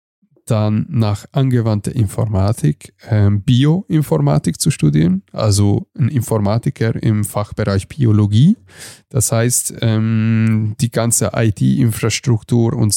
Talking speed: 95 wpm